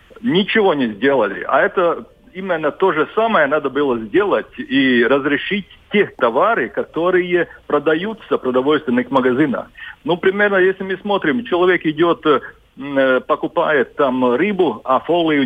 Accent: native